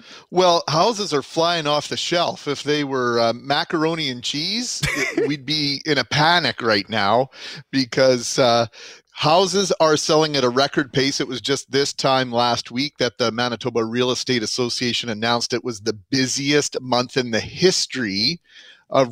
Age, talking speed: 30-49, 165 wpm